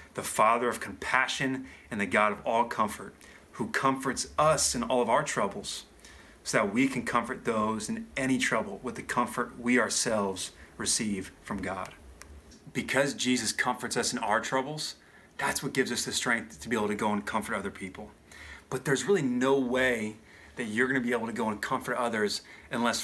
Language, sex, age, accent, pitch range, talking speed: English, male, 30-49, American, 105-130 Hz, 195 wpm